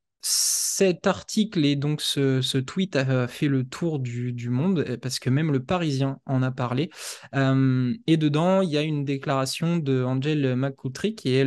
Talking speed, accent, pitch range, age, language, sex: 185 wpm, French, 130-155 Hz, 20-39, French, male